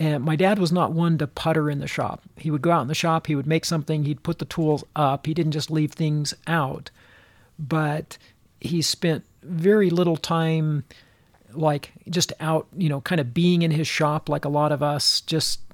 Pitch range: 145-165 Hz